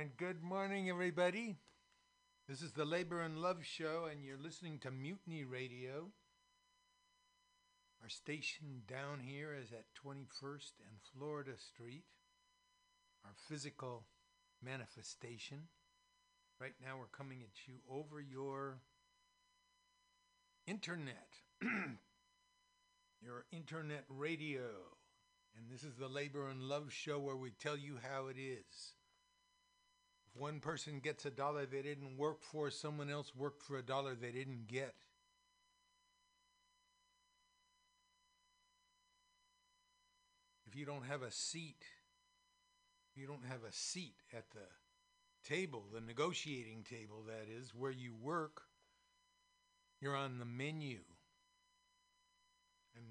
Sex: male